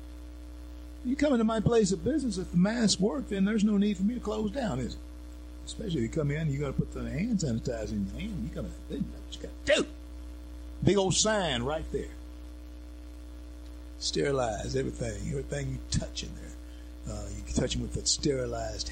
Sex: male